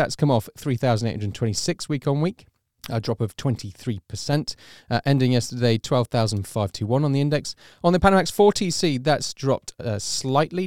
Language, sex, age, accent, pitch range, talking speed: English, male, 30-49, British, 110-145 Hz, 145 wpm